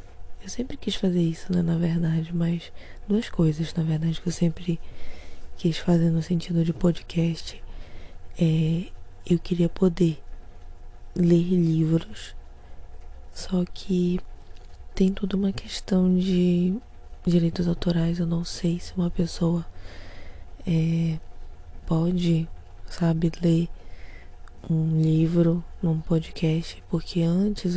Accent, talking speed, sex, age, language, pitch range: Brazilian, 115 wpm, female, 20-39, Portuguese, 160-180 Hz